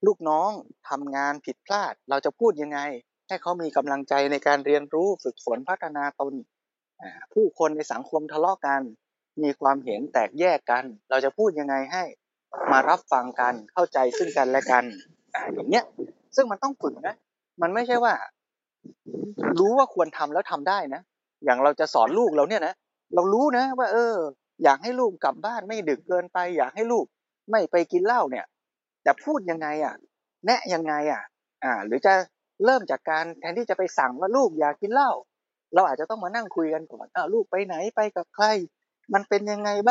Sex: male